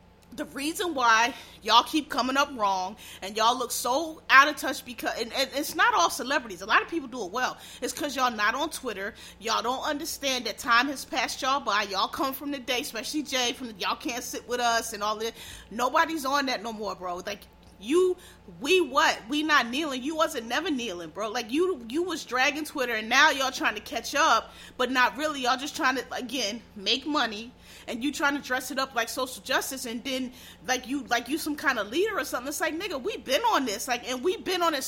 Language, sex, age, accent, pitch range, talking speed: English, female, 30-49, American, 235-305 Hz, 235 wpm